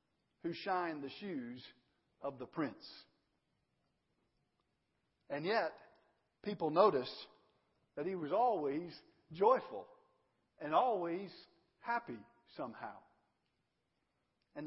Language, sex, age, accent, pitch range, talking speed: English, male, 50-69, American, 175-250 Hz, 85 wpm